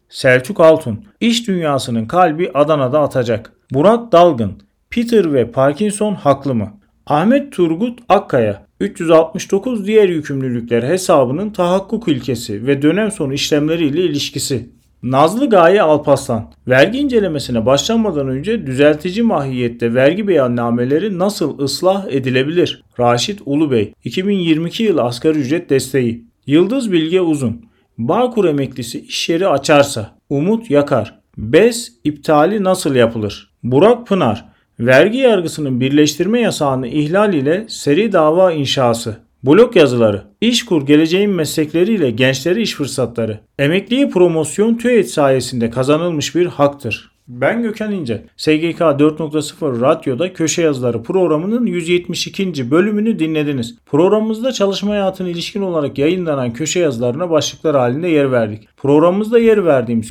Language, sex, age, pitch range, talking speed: Turkish, male, 40-59, 130-185 Hz, 115 wpm